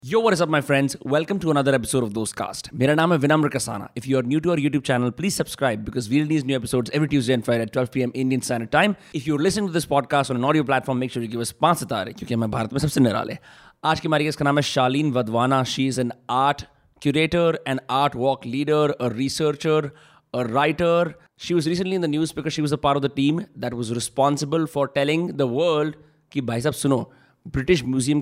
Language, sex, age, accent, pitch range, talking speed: Hindi, male, 30-49, native, 130-160 Hz, 245 wpm